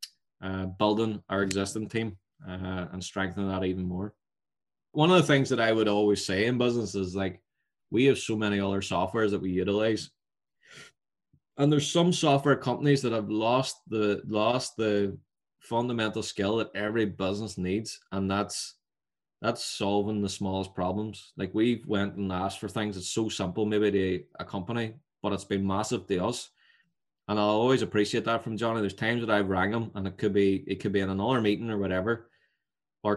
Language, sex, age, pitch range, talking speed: English, male, 20-39, 95-115 Hz, 190 wpm